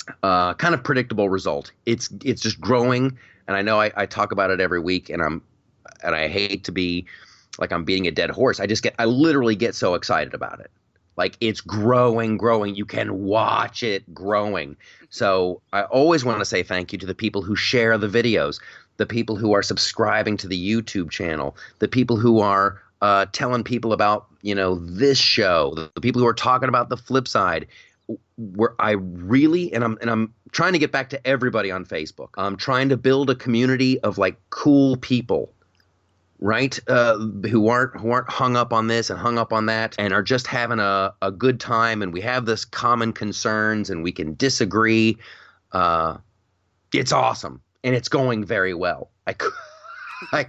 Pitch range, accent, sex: 100-125 Hz, American, male